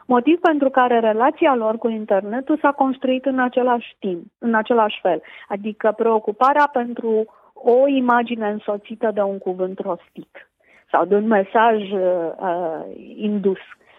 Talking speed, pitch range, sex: 130 wpm, 195-245 Hz, female